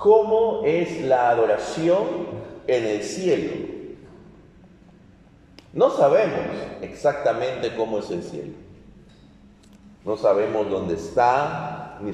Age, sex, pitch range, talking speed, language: 40-59, male, 130-195 Hz, 95 wpm, Spanish